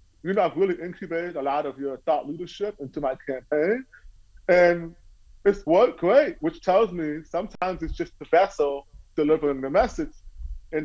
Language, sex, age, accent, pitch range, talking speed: English, male, 30-49, American, 130-175 Hz, 165 wpm